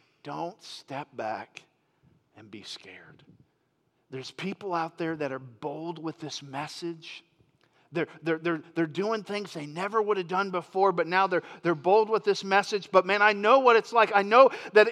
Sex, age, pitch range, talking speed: male, 50-69, 165-255 Hz, 185 wpm